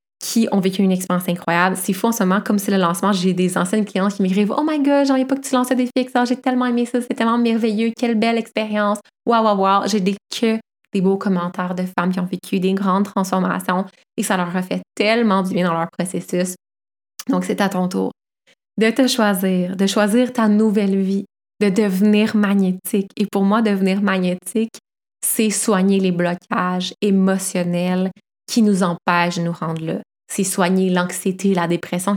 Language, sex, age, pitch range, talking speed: French, female, 20-39, 185-215 Hz, 200 wpm